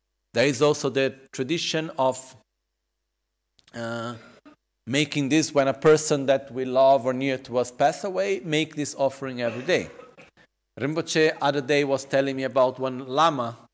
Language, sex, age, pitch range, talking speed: Italian, male, 40-59, 120-155 Hz, 155 wpm